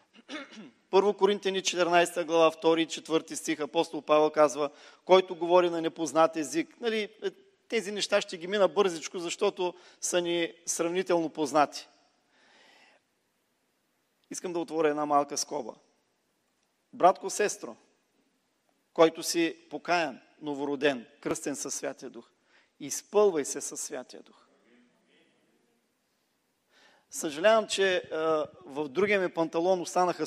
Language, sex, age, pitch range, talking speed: Bulgarian, male, 40-59, 165-215 Hz, 110 wpm